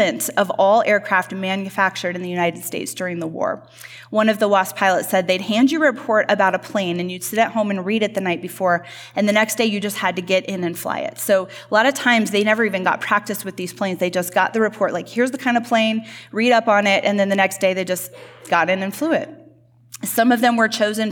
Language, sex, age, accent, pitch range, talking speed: English, female, 20-39, American, 180-215 Hz, 270 wpm